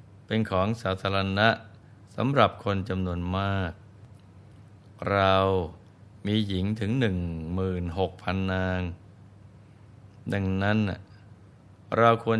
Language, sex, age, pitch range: Thai, male, 20-39, 95-110 Hz